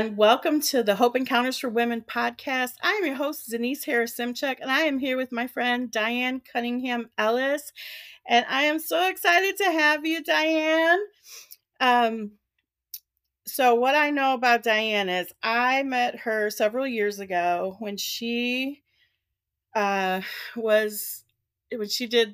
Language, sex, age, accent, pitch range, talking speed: English, female, 40-59, American, 205-255 Hz, 150 wpm